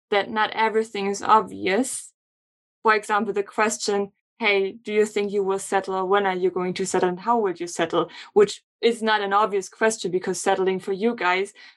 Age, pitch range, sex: 20-39, 195-220 Hz, female